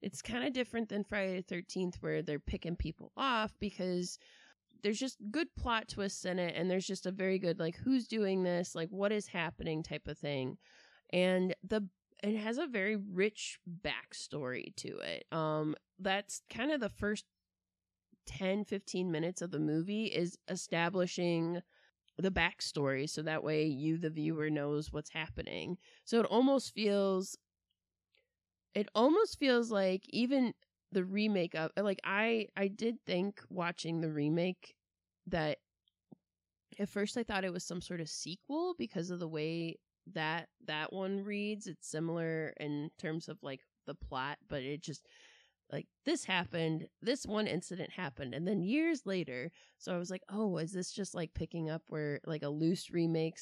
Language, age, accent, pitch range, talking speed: English, 20-39, American, 160-205 Hz, 170 wpm